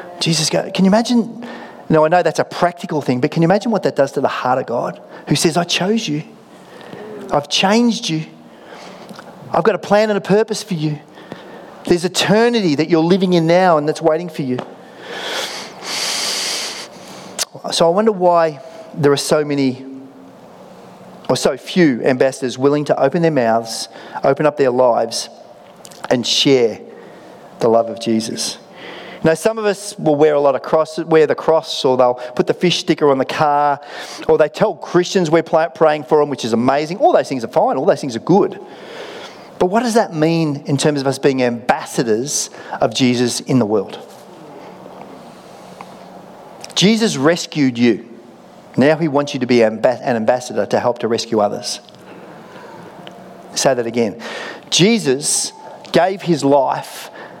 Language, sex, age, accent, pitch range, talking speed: English, male, 40-59, Australian, 140-180 Hz, 170 wpm